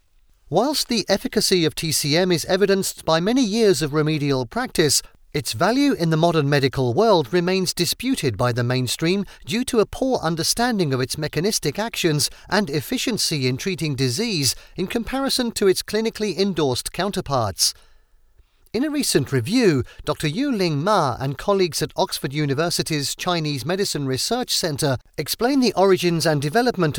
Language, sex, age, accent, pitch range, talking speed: English, male, 40-59, British, 145-210 Hz, 150 wpm